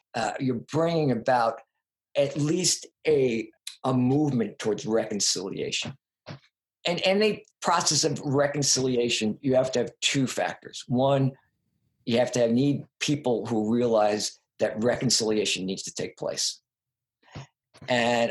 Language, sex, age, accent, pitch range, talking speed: English, male, 50-69, American, 125-155 Hz, 130 wpm